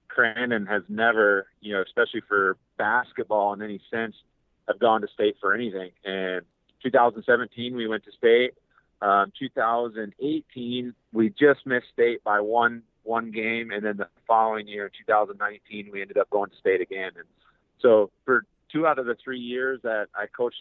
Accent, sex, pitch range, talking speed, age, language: American, male, 100-130 Hz, 170 wpm, 40-59, English